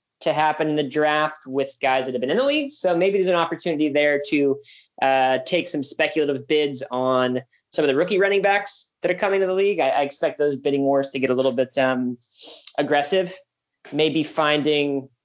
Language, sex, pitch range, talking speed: English, male, 130-165 Hz, 210 wpm